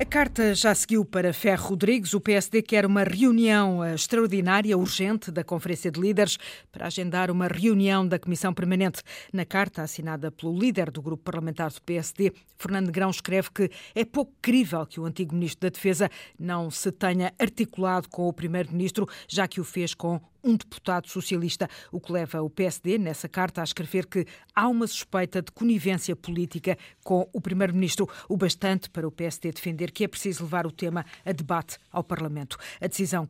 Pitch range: 170-195 Hz